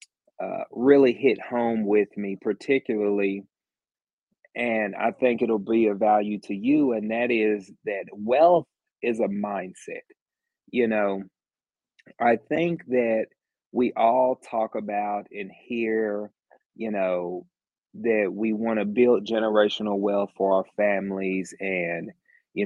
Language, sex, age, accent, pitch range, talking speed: English, male, 30-49, American, 100-120 Hz, 130 wpm